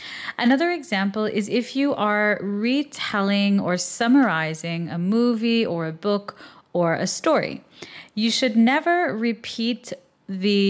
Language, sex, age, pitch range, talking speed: English, female, 30-49, 185-245 Hz, 125 wpm